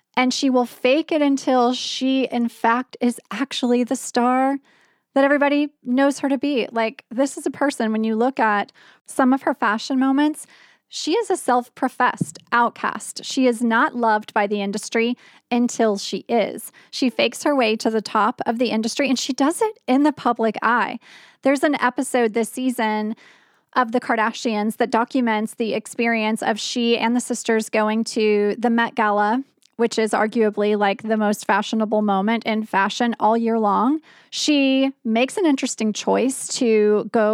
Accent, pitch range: American, 215-265 Hz